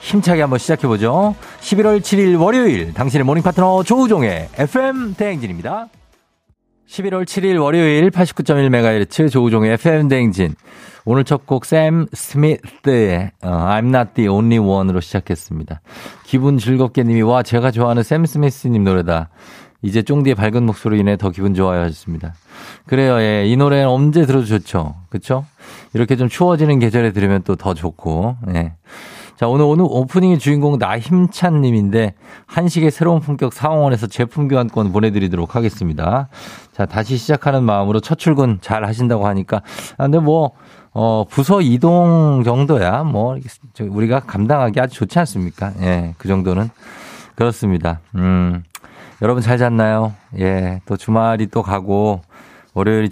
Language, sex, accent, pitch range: Korean, male, native, 100-150 Hz